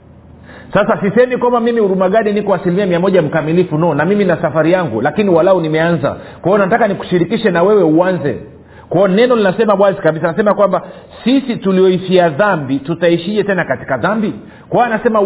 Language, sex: Swahili, male